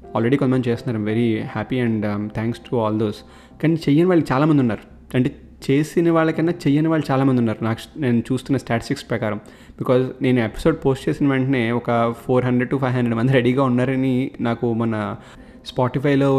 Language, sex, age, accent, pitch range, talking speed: Telugu, male, 20-39, native, 120-145 Hz, 170 wpm